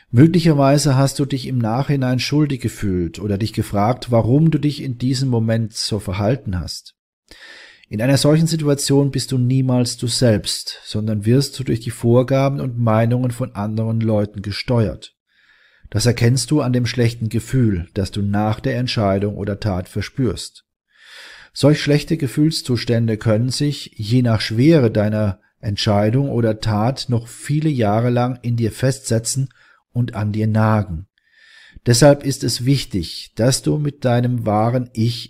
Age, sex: 40-59, male